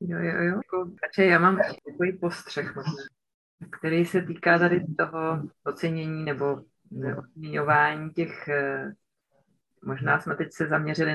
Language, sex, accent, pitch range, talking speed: Czech, female, native, 155-175 Hz, 120 wpm